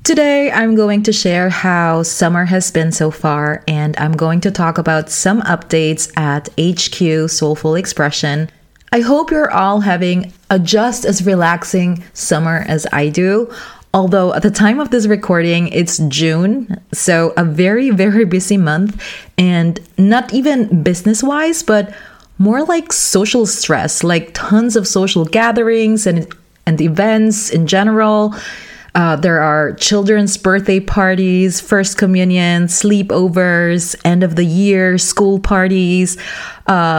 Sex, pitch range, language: female, 170-210 Hz, English